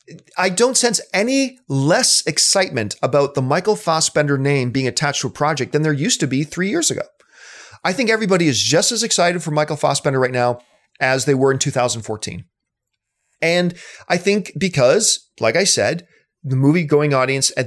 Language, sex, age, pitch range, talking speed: English, male, 40-59, 130-180 Hz, 175 wpm